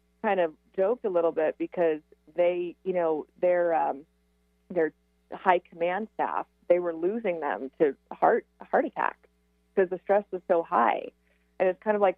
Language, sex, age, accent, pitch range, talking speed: English, female, 30-49, American, 155-200 Hz, 170 wpm